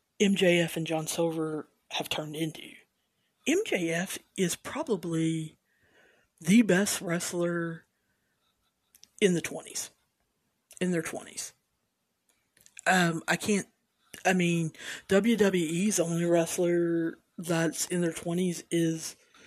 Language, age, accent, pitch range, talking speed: English, 50-69, American, 160-185 Hz, 100 wpm